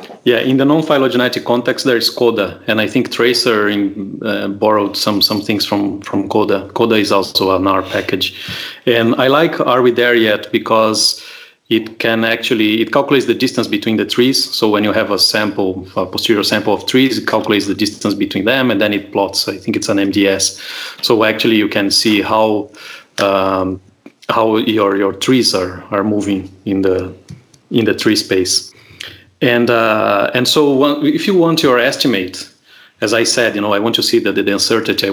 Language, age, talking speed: English, 30-49, 195 wpm